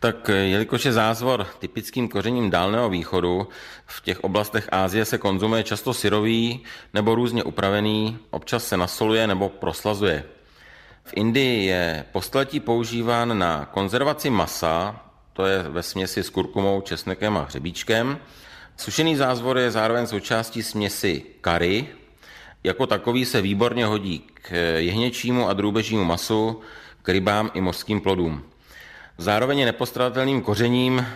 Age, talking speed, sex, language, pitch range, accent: 40-59, 125 wpm, male, Czech, 95-115 Hz, native